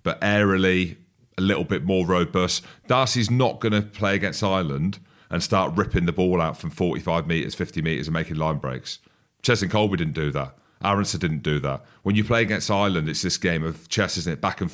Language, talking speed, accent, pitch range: English, 215 wpm, British, 85-105 Hz